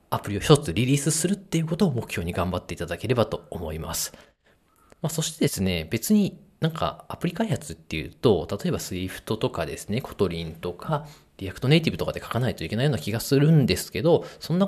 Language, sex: Japanese, male